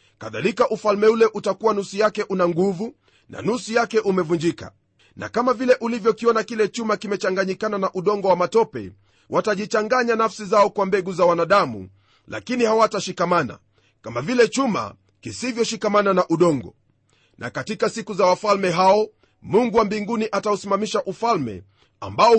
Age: 40-59